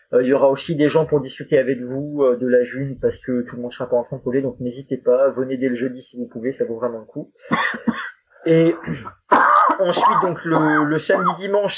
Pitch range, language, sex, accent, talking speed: 130-180 Hz, French, male, French, 230 wpm